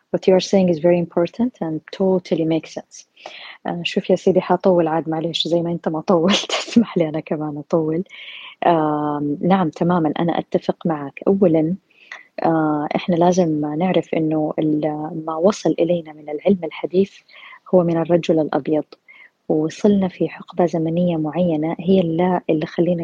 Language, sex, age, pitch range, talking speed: Arabic, female, 20-39, 160-190 Hz, 155 wpm